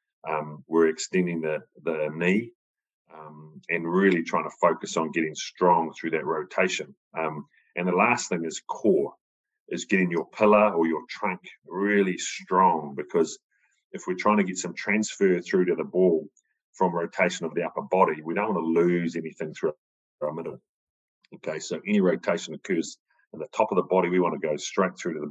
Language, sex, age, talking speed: English, male, 40-59, 190 wpm